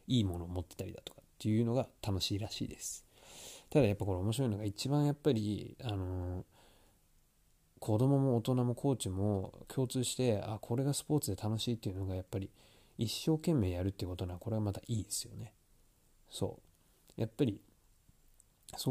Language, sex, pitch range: Japanese, male, 95-125 Hz